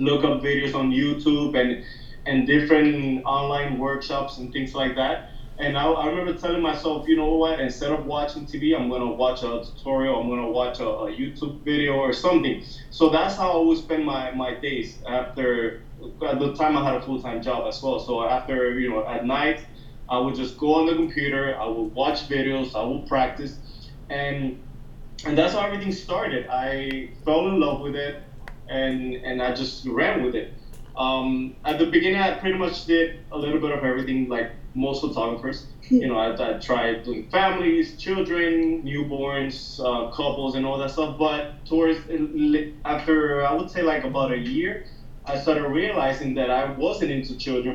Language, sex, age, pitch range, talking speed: English, male, 20-39, 130-150 Hz, 185 wpm